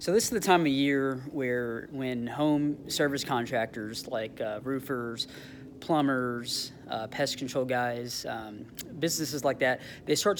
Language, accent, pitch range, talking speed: English, American, 120-150 Hz, 150 wpm